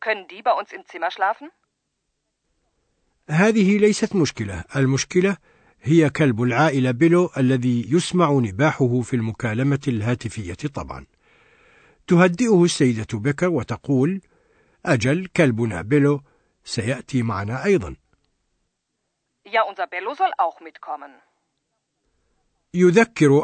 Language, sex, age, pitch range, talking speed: Arabic, male, 60-79, 120-170 Hz, 65 wpm